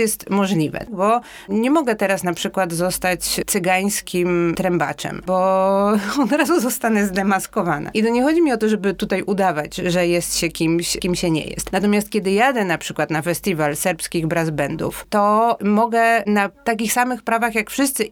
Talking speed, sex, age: 170 wpm, female, 30-49